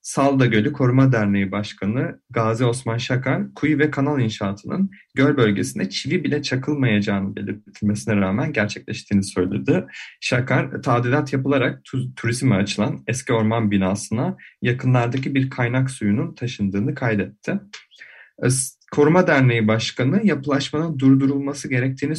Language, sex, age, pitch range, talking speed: Turkish, male, 30-49, 105-140 Hz, 110 wpm